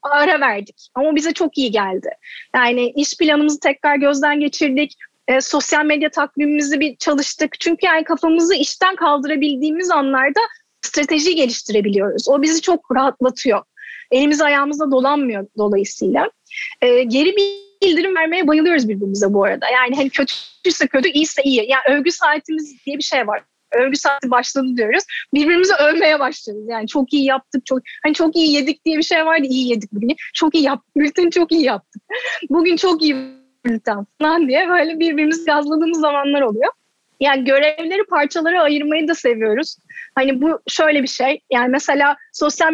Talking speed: 155 wpm